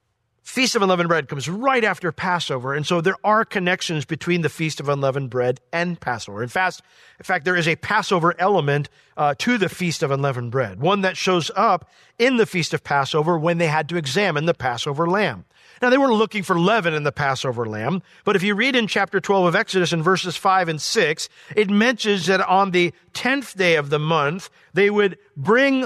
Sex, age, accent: male, 50-69, American